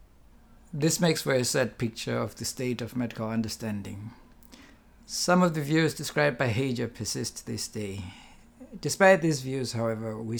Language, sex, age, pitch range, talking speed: English, male, 60-79, 115-140 Hz, 160 wpm